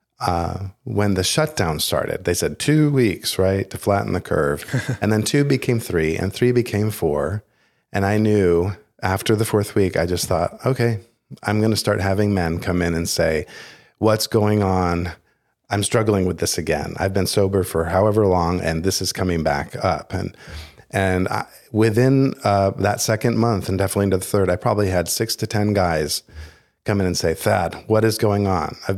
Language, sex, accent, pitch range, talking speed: English, male, American, 90-110 Hz, 195 wpm